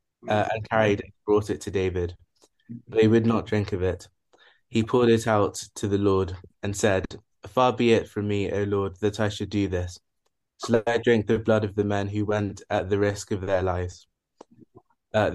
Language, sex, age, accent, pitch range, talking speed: English, male, 20-39, British, 100-110 Hz, 205 wpm